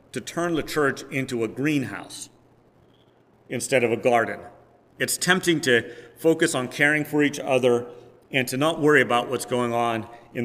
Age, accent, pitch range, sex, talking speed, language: 40-59, American, 120-145 Hz, male, 165 wpm, English